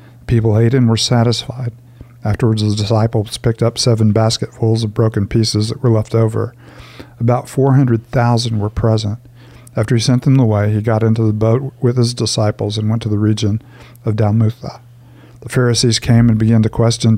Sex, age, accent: male, 50-69, American